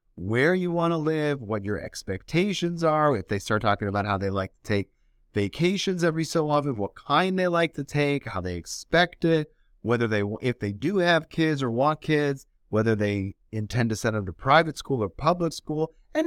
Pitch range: 105-160 Hz